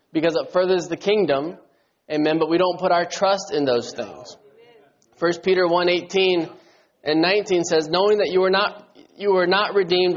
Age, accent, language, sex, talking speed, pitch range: 20-39, American, English, male, 175 wpm, 150-185 Hz